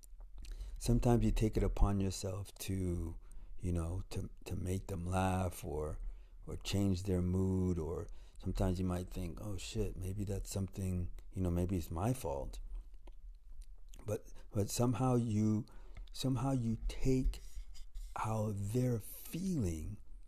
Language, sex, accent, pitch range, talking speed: English, male, American, 85-110 Hz, 135 wpm